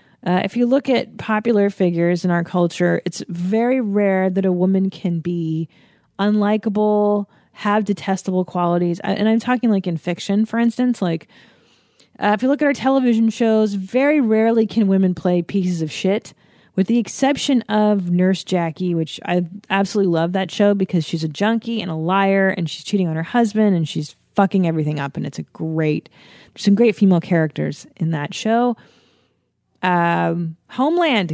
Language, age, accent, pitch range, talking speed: English, 30-49, American, 175-220 Hz, 170 wpm